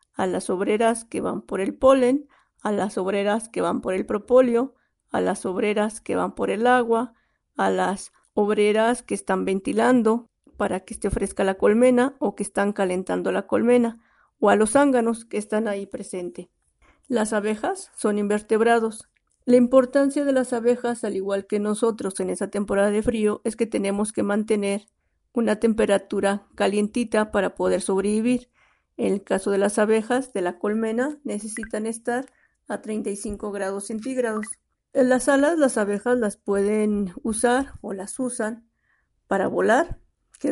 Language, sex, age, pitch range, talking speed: Spanish, female, 50-69, 205-245 Hz, 160 wpm